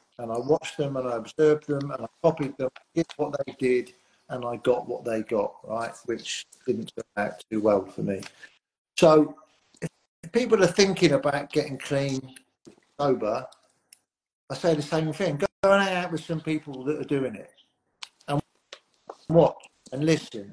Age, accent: 50-69, British